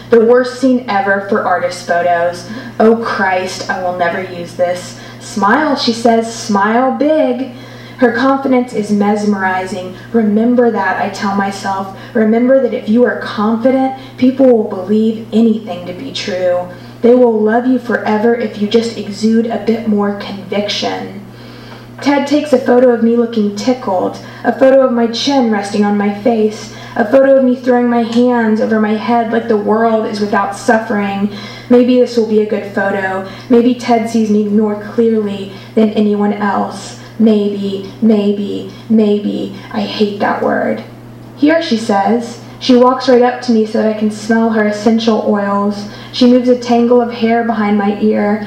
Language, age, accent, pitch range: English, 20-39, American, 205-240 Hz